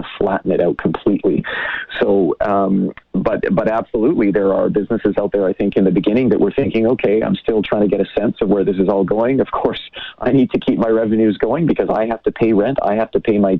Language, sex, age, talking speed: English, male, 40-59, 245 wpm